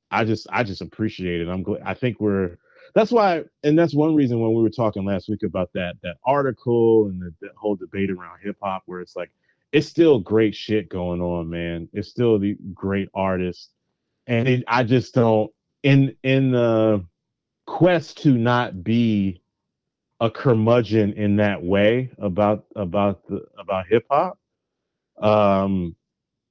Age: 30-49